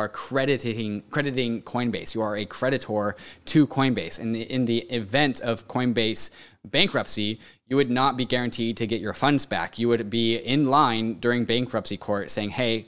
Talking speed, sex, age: 170 wpm, male, 20-39